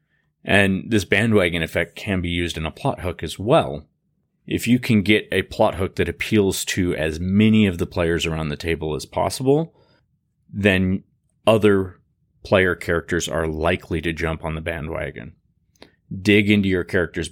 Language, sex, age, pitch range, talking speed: English, male, 30-49, 80-95 Hz, 165 wpm